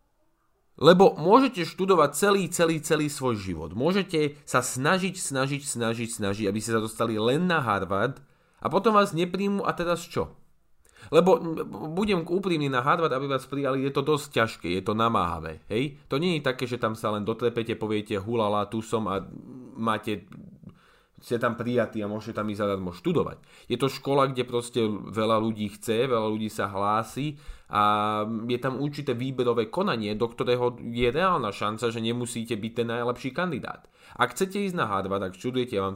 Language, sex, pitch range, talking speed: English, male, 110-150 Hz, 180 wpm